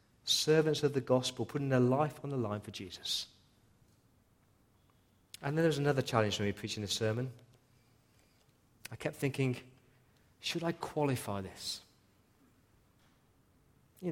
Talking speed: 130 wpm